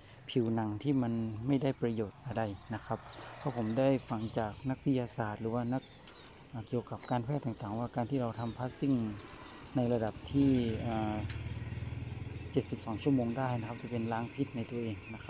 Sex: male